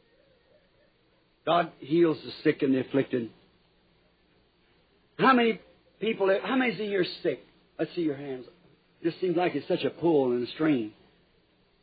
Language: English